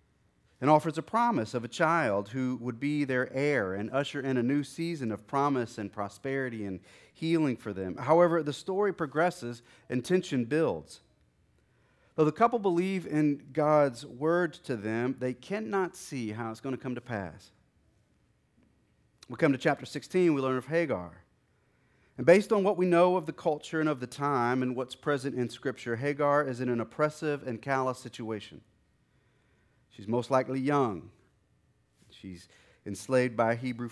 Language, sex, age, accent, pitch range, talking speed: English, male, 40-59, American, 110-145 Hz, 170 wpm